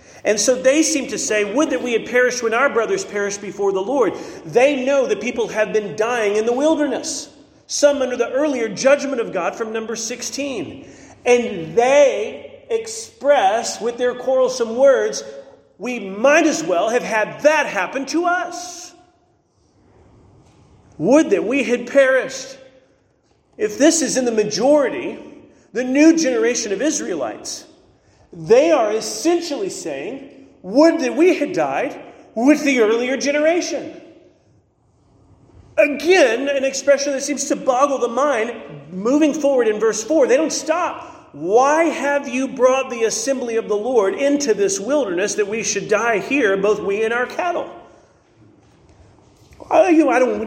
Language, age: English, 40-59